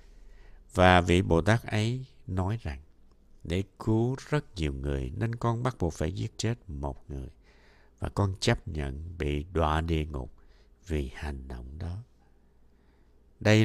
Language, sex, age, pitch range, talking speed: Vietnamese, male, 60-79, 70-110 Hz, 150 wpm